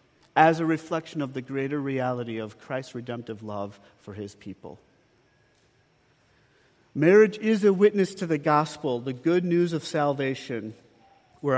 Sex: male